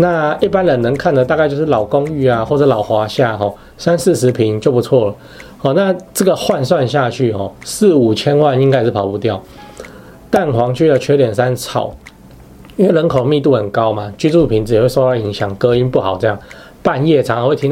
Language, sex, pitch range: Chinese, male, 110-145 Hz